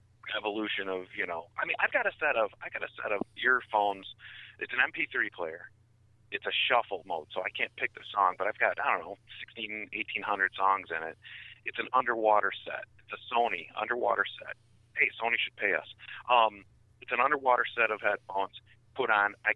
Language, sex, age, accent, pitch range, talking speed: English, male, 40-59, American, 95-115 Hz, 205 wpm